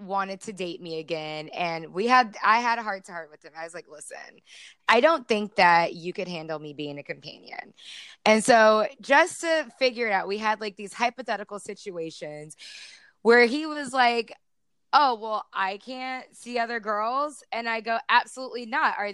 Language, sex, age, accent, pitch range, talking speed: English, female, 20-39, American, 205-265 Hz, 190 wpm